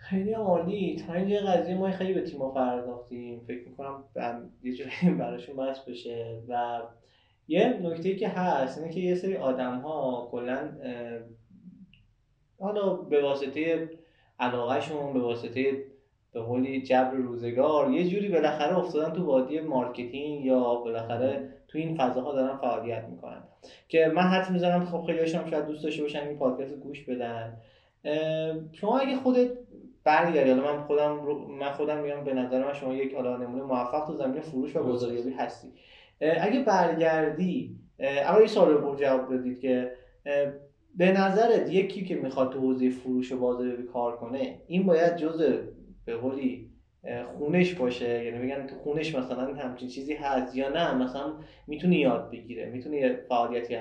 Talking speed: 150 wpm